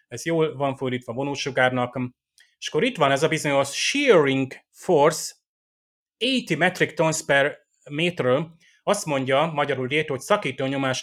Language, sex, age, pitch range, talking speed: Hungarian, male, 30-49, 125-155 Hz, 145 wpm